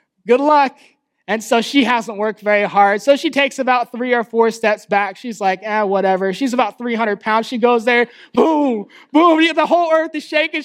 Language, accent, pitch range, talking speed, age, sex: English, American, 205-265 Hz, 205 wpm, 20-39, male